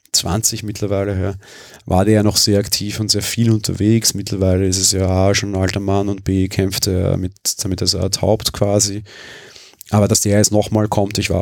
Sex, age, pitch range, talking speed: male, 30-49, 95-115 Hz, 210 wpm